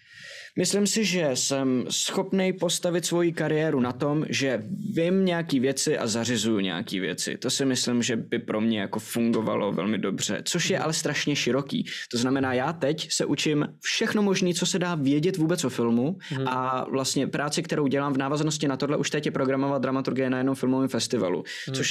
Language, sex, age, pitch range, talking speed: Czech, male, 20-39, 125-160 Hz, 185 wpm